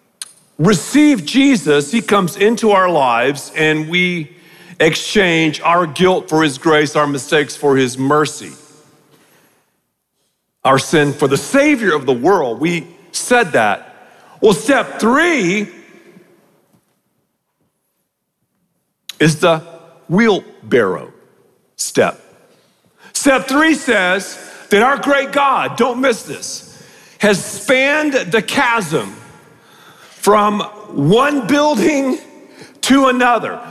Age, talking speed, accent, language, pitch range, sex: 50-69, 100 wpm, American, English, 175-265 Hz, male